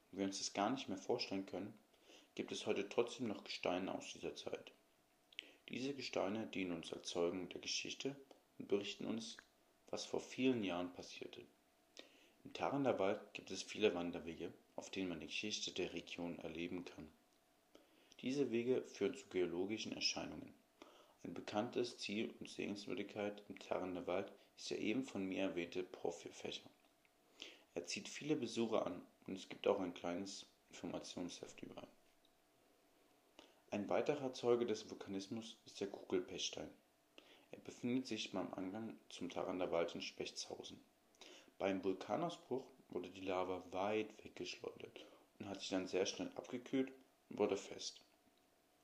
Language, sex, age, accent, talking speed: German, male, 40-59, German, 145 wpm